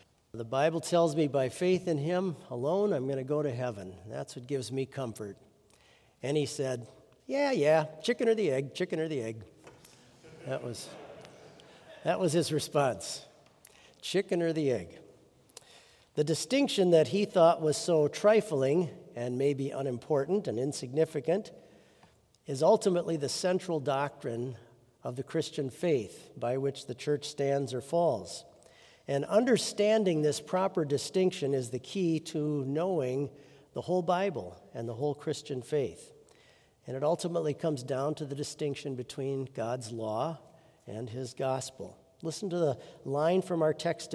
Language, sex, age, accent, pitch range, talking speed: English, male, 50-69, American, 130-175 Hz, 150 wpm